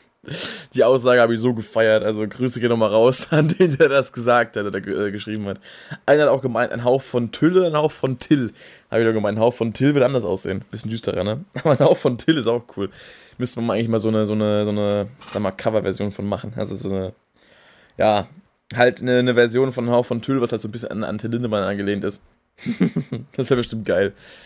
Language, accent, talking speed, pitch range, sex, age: German, German, 240 wpm, 110-135 Hz, male, 20-39